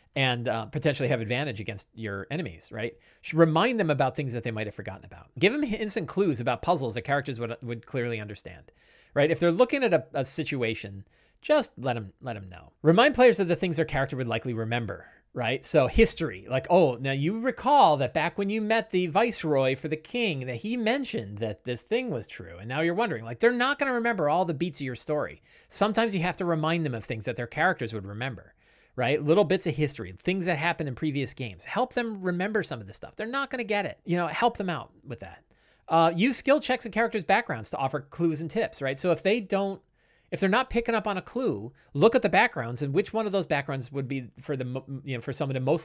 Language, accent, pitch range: English, American, 120-195 Hz